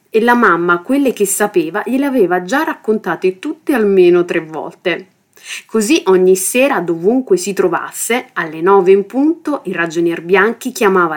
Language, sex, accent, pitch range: Italian, female, native, 185-275 Hz